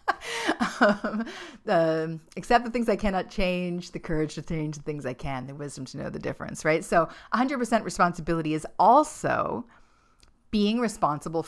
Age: 40-59